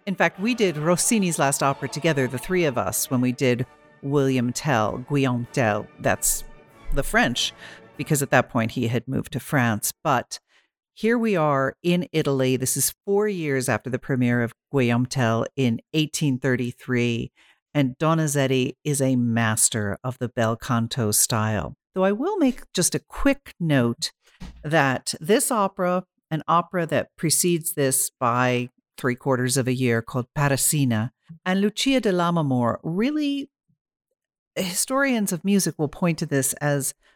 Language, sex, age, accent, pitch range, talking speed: English, female, 50-69, American, 130-175 Hz, 155 wpm